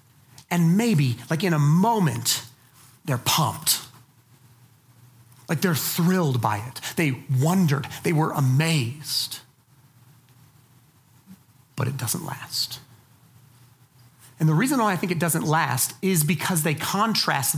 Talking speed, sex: 120 wpm, male